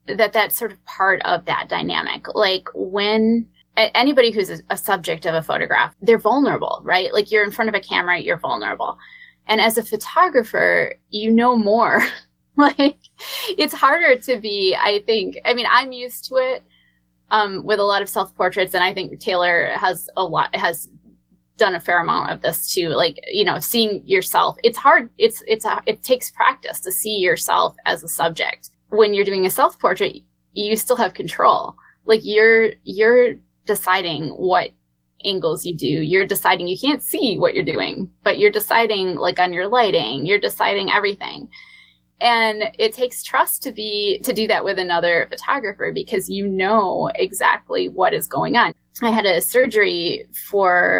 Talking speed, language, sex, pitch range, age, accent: 175 wpm, English, female, 185-250 Hz, 20-39, American